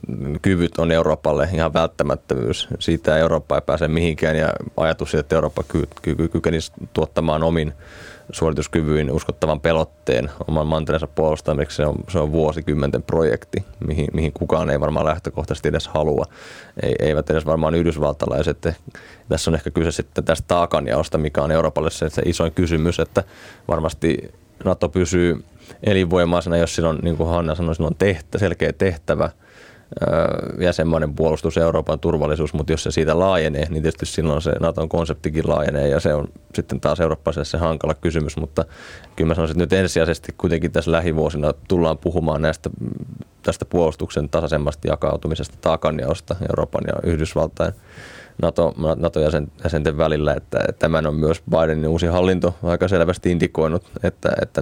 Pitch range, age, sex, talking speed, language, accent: 75-85 Hz, 20-39, male, 150 wpm, Finnish, native